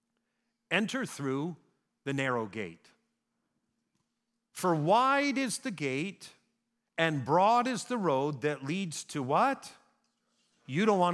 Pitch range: 155-235 Hz